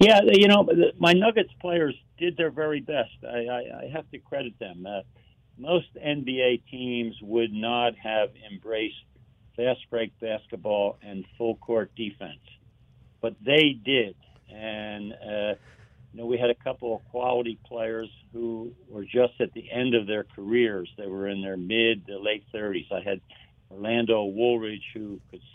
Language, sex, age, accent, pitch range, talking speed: English, male, 60-79, American, 105-120 Hz, 155 wpm